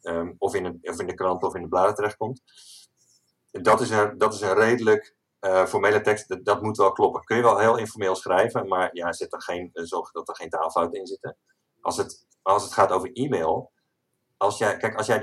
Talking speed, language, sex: 235 wpm, Dutch, male